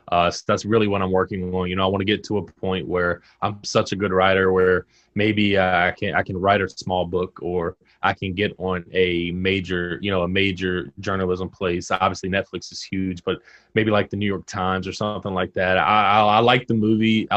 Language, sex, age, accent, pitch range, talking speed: English, male, 20-39, American, 90-100 Hz, 230 wpm